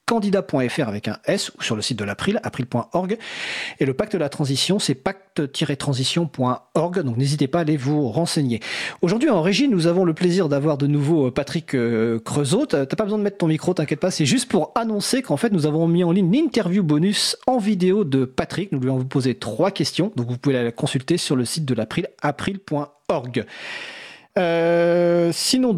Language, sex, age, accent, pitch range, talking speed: French, male, 40-59, French, 140-190 Hz, 195 wpm